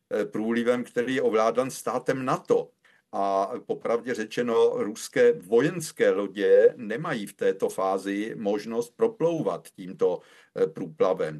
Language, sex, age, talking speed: Czech, male, 50-69, 105 wpm